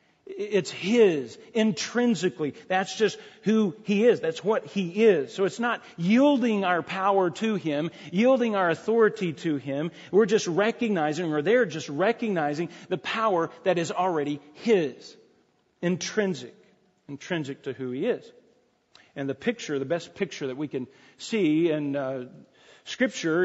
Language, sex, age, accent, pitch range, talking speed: English, male, 40-59, American, 165-230 Hz, 145 wpm